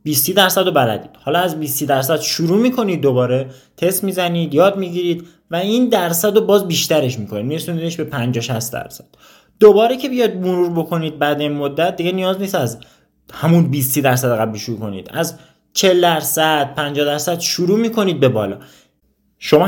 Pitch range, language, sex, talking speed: 130-190 Hz, Persian, male, 155 wpm